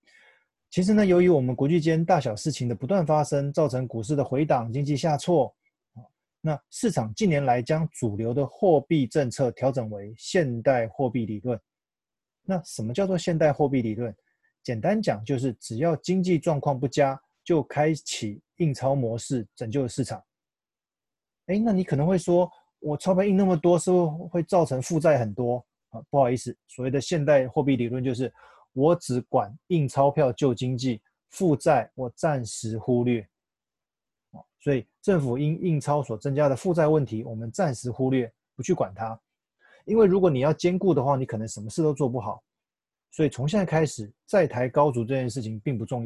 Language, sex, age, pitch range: Chinese, male, 20-39, 125-165 Hz